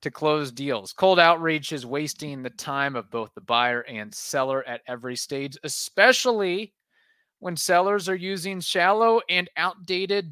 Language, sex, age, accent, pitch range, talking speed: English, male, 30-49, American, 120-170 Hz, 150 wpm